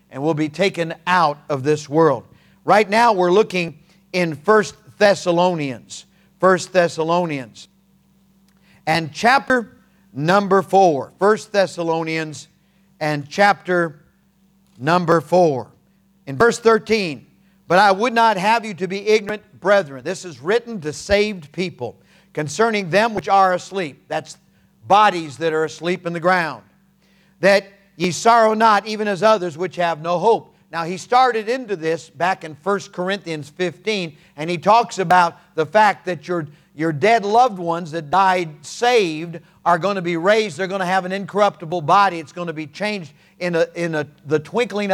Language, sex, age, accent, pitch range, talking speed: English, male, 50-69, American, 165-200 Hz, 155 wpm